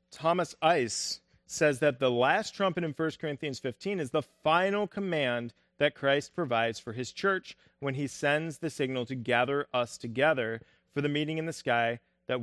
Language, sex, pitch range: English, male, 120-165 Hz